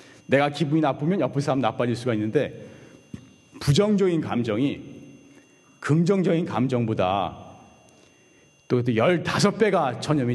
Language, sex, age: Korean, male, 40-59